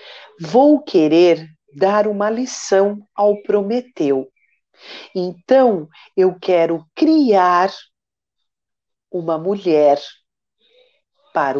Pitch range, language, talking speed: 155-245 Hz, Portuguese, 70 wpm